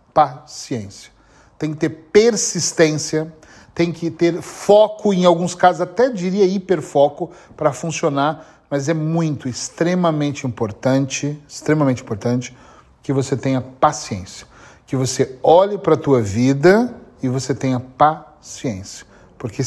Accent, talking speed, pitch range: Brazilian, 120 wpm, 130-160 Hz